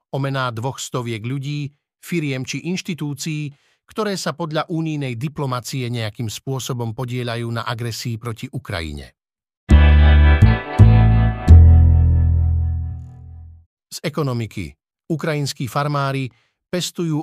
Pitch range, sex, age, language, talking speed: 115-145 Hz, male, 50-69, Slovak, 85 wpm